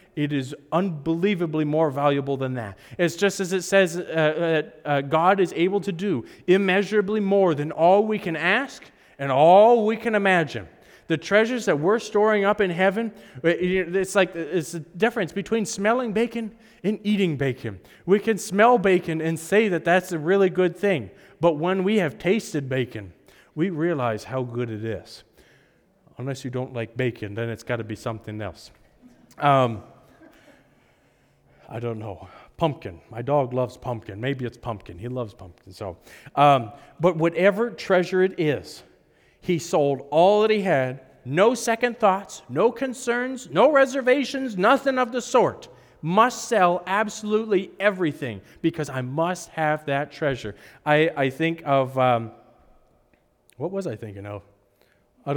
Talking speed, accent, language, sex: 160 wpm, American, English, male